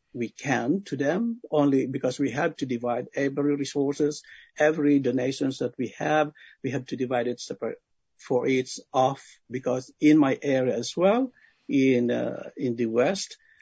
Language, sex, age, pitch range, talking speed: English, male, 60-79, 135-170 Hz, 165 wpm